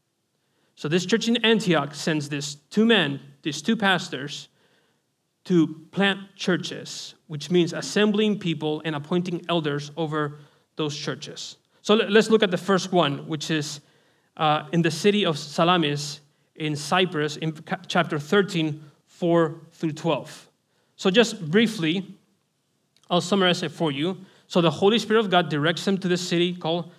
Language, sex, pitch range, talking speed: English, male, 155-190 Hz, 150 wpm